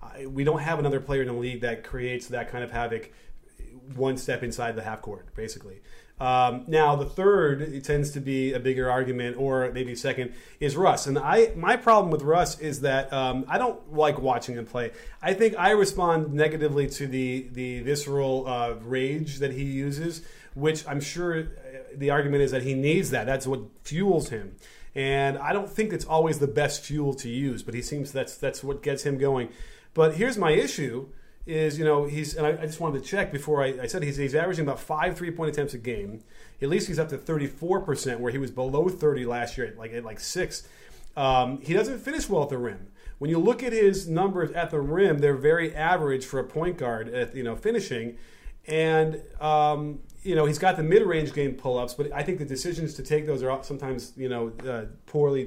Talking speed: 215 wpm